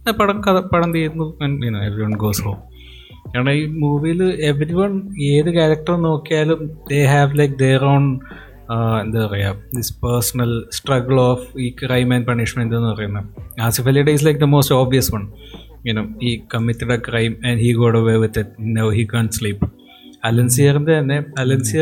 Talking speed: 160 wpm